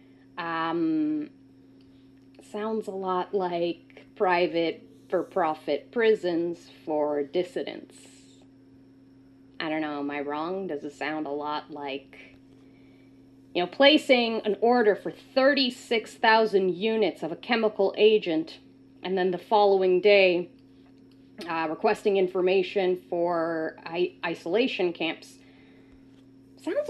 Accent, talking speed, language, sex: American, 105 wpm, English, female